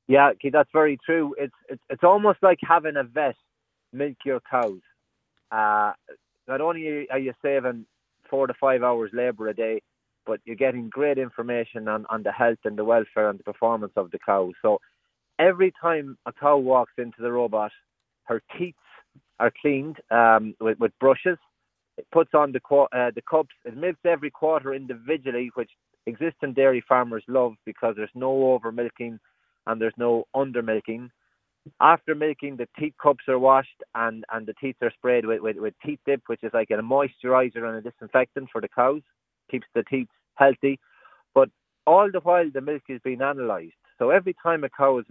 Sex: male